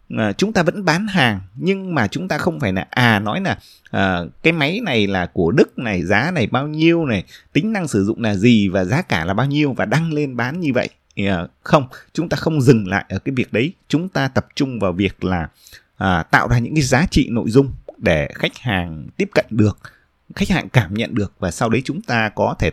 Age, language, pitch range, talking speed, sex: 20-39, Vietnamese, 100-155 Hz, 230 wpm, male